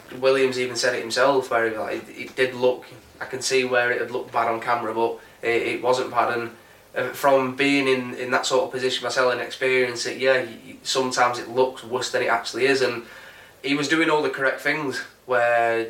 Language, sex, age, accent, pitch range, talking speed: English, male, 10-29, British, 120-135 Hz, 210 wpm